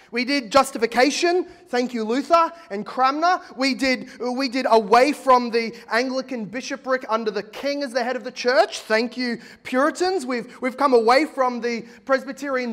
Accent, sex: Australian, male